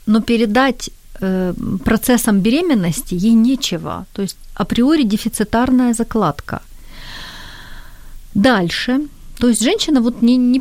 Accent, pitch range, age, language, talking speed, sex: native, 195-250 Hz, 40-59, Ukrainian, 100 wpm, female